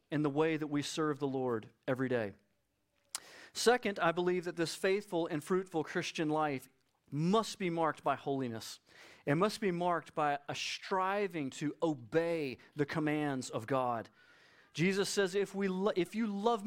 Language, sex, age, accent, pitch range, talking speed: English, male, 40-59, American, 150-195 Hz, 160 wpm